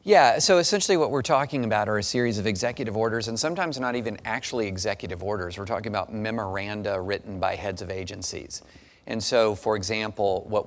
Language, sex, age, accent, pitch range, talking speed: English, male, 40-59, American, 95-110 Hz, 190 wpm